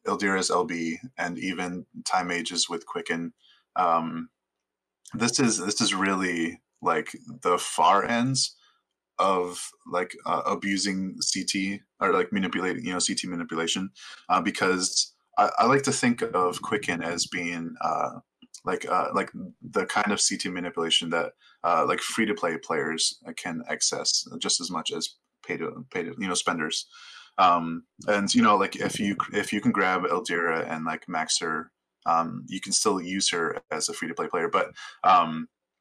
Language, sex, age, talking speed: English, male, 20-39, 165 wpm